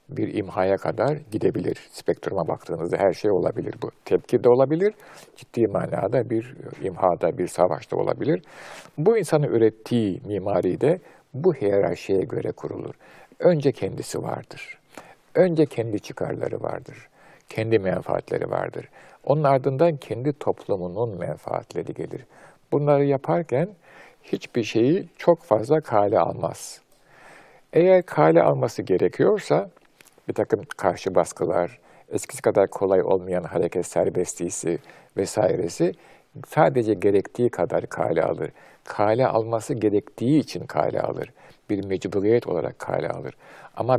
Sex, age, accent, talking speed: male, 50-69, native, 115 wpm